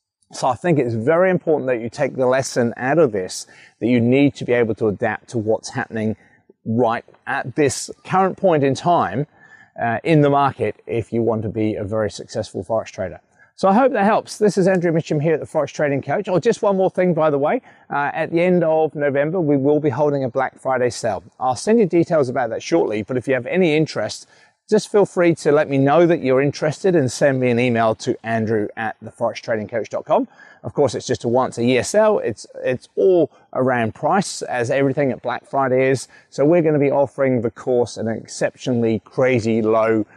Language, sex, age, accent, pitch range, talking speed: English, male, 30-49, British, 115-160 Hz, 220 wpm